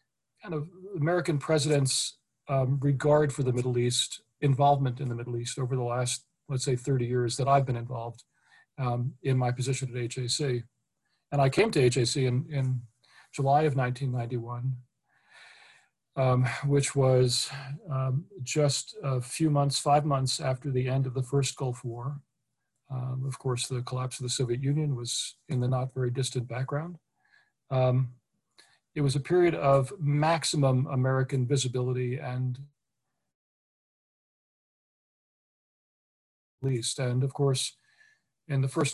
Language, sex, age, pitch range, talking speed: English, male, 40-59, 125-145 Hz, 140 wpm